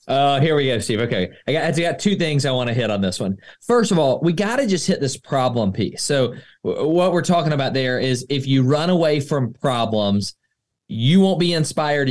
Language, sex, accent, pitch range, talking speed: English, male, American, 120-165 Hz, 245 wpm